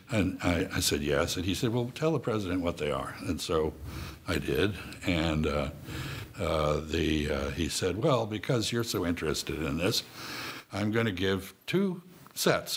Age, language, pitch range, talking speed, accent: 60-79, English, 80-105 Hz, 185 wpm, American